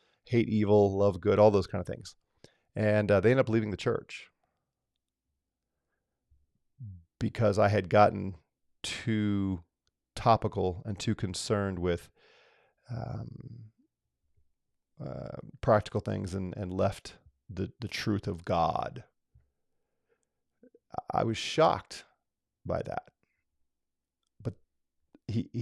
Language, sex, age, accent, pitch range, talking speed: English, male, 40-59, American, 90-110 Hz, 110 wpm